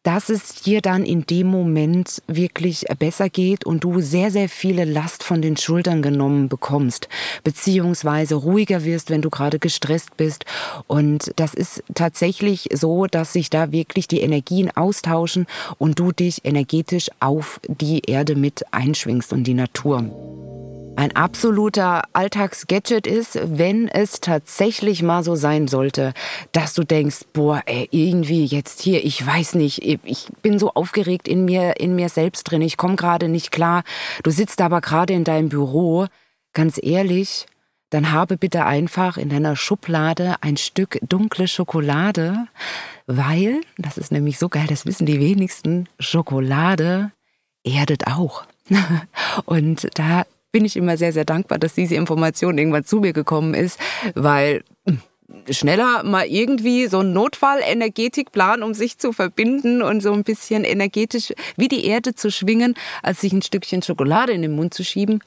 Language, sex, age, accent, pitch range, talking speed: German, female, 20-39, German, 155-195 Hz, 155 wpm